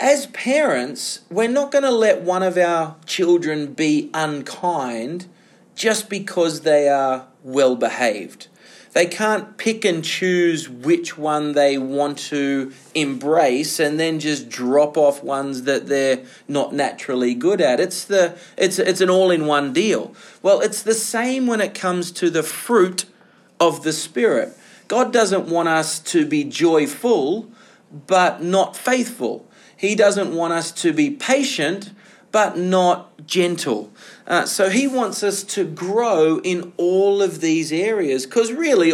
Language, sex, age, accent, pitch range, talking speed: English, male, 30-49, Australian, 155-215 Hz, 145 wpm